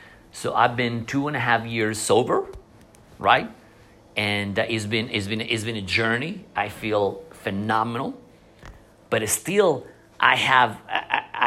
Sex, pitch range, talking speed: male, 100-120 Hz, 135 wpm